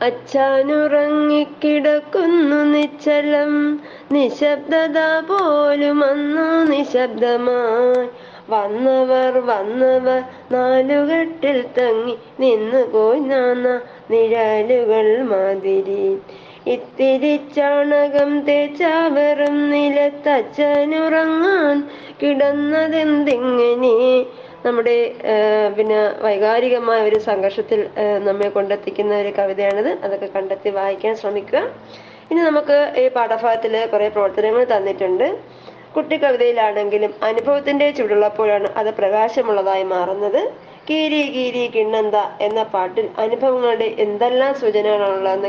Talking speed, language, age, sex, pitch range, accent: 70 wpm, Malayalam, 20-39, female, 215-290 Hz, native